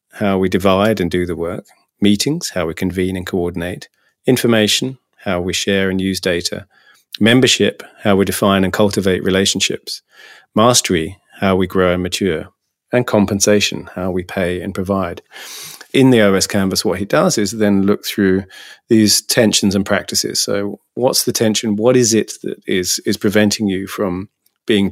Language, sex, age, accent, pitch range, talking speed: English, male, 40-59, British, 95-105 Hz, 165 wpm